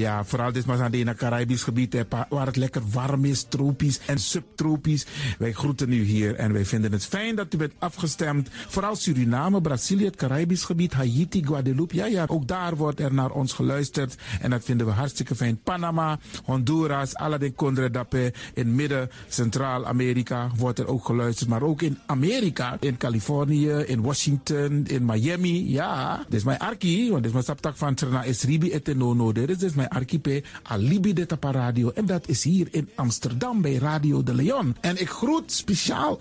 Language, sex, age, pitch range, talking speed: Dutch, male, 50-69, 125-185 Hz, 175 wpm